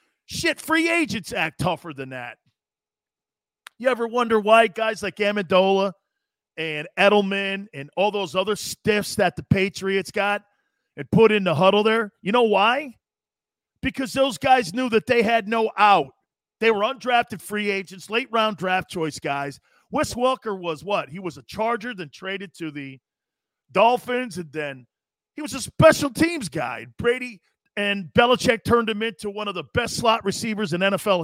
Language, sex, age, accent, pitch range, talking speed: English, male, 40-59, American, 190-245 Hz, 165 wpm